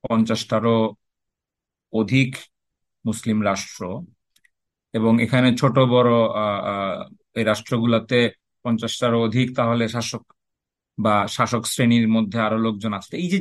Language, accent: English, Indian